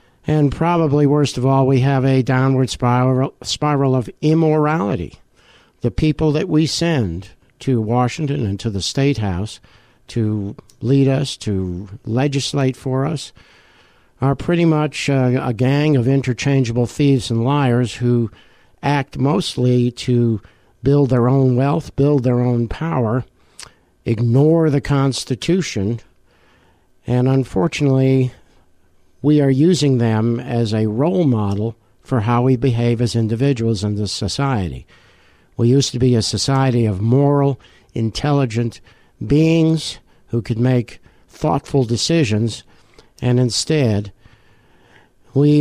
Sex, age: male, 60-79